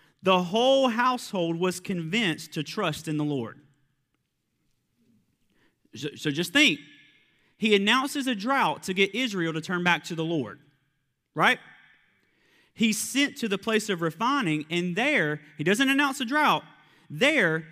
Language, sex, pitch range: English, male, 150-230 Hz